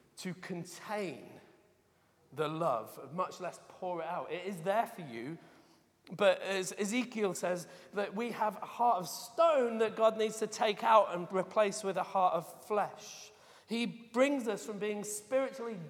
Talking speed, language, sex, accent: 165 wpm, English, male, British